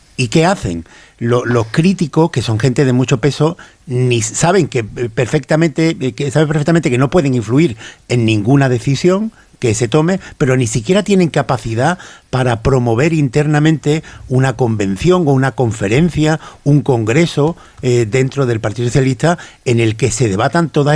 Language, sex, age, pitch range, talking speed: Spanish, male, 50-69, 115-160 Hz, 155 wpm